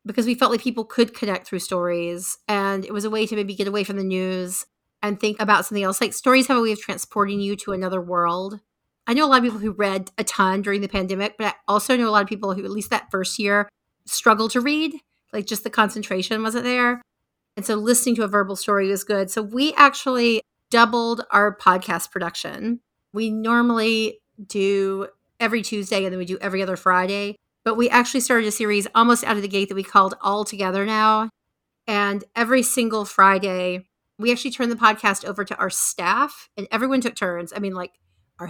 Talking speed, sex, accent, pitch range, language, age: 215 wpm, female, American, 195-235 Hz, English, 30-49